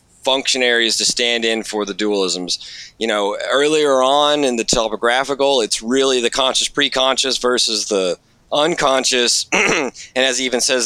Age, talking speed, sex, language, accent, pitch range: 30-49, 150 wpm, male, English, American, 105-125 Hz